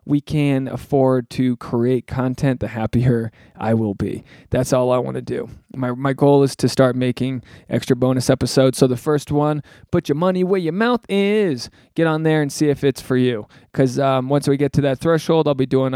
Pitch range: 130-165 Hz